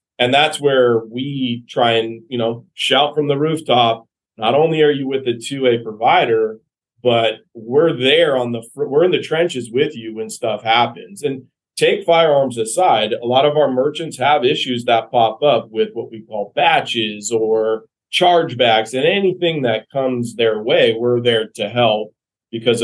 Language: English